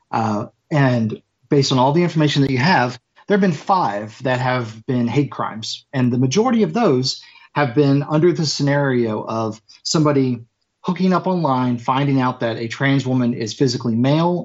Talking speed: 180 wpm